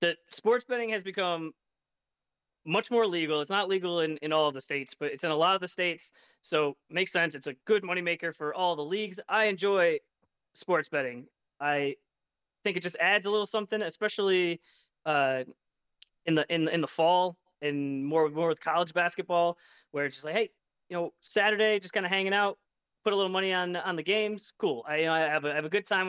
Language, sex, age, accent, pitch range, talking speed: English, male, 30-49, American, 160-210 Hz, 220 wpm